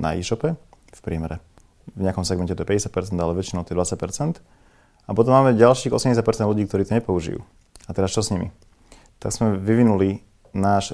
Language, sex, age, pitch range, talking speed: Czech, male, 30-49, 90-110 Hz, 180 wpm